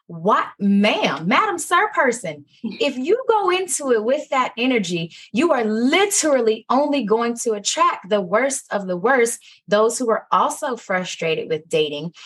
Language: English